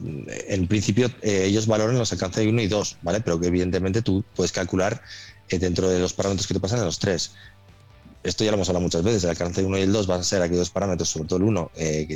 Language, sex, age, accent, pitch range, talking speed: Spanish, male, 20-39, Spanish, 85-105 Hz, 270 wpm